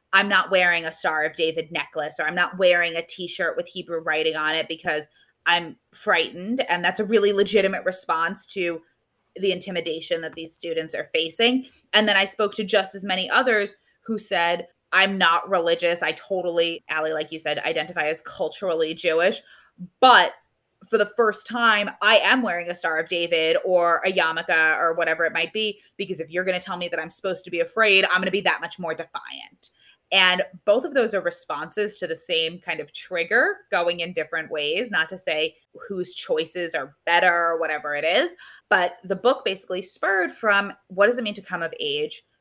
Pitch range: 165-205 Hz